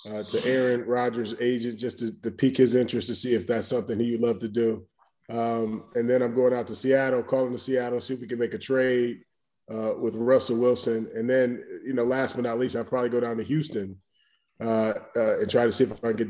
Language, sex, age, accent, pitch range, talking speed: English, male, 20-39, American, 115-130 Hz, 250 wpm